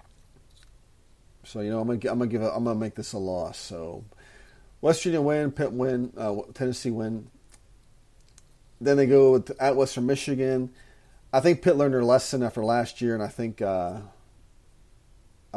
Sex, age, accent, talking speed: male, 40-59, American, 160 wpm